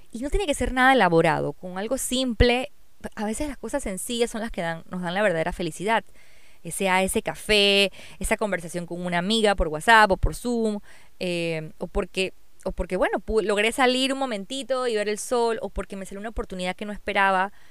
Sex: female